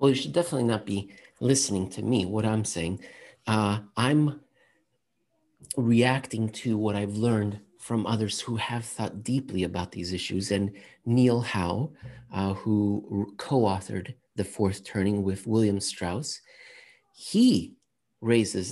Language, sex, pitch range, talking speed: English, male, 100-125 Hz, 140 wpm